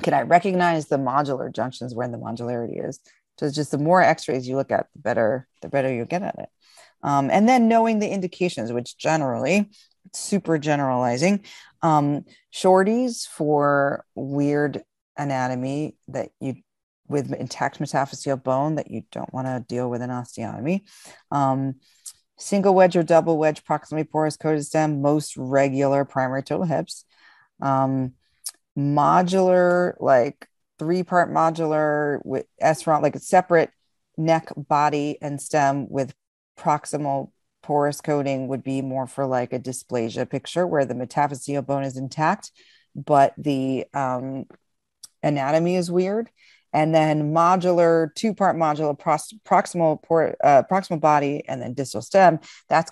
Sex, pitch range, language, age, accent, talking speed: female, 135-170 Hz, English, 40-59, American, 145 wpm